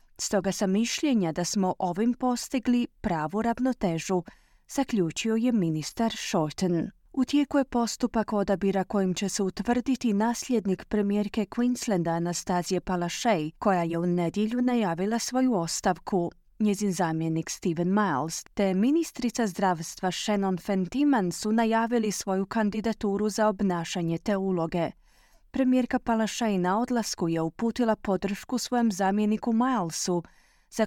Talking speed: 120 wpm